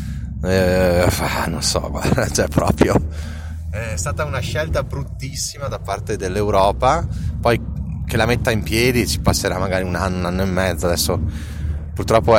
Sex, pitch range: male, 85-105 Hz